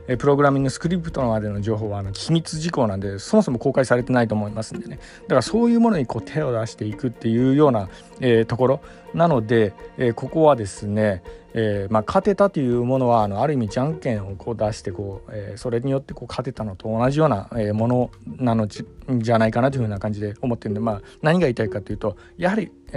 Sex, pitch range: male, 105-145 Hz